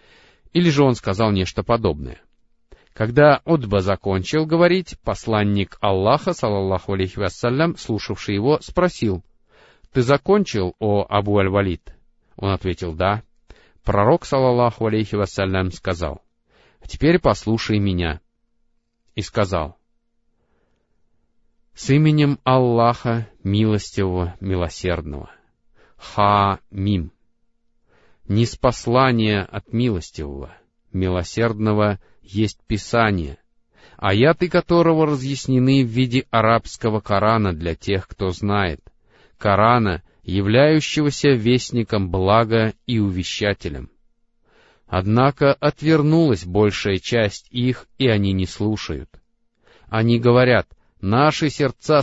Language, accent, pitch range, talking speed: Russian, native, 95-130 Hz, 95 wpm